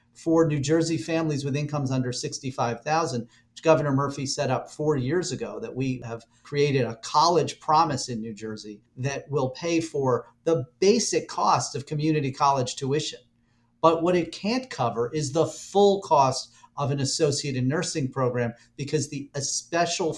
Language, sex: English, male